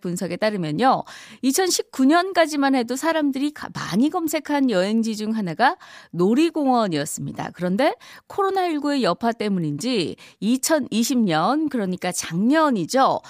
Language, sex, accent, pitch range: Korean, female, native, 180-280 Hz